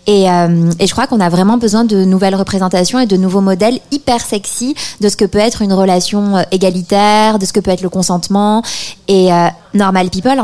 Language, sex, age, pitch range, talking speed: French, female, 20-39, 185-215 Hz, 215 wpm